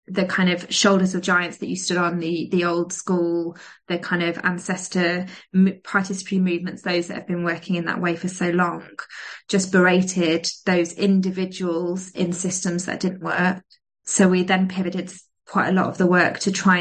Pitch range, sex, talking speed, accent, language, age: 180-195 Hz, female, 185 wpm, British, English, 20-39